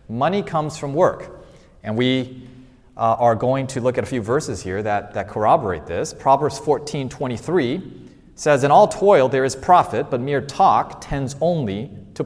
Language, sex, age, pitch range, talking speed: English, male, 30-49, 125-165 Hz, 175 wpm